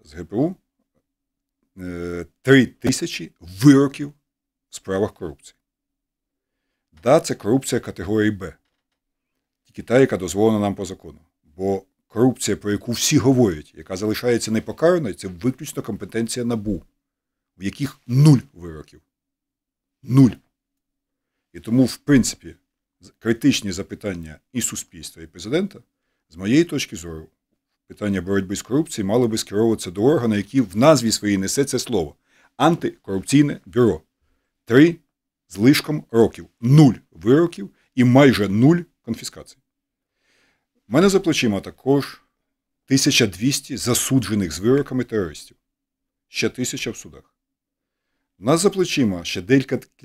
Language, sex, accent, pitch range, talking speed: Ukrainian, male, native, 100-140 Hz, 115 wpm